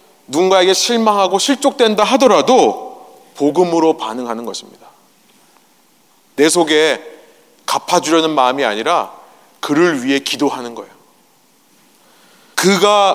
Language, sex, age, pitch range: Korean, male, 30-49, 155-215 Hz